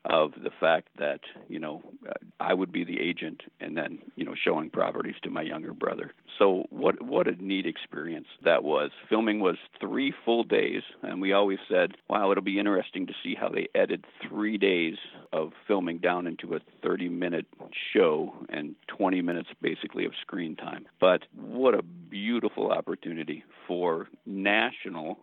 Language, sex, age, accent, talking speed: English, male, 50-69, American, 165 wpm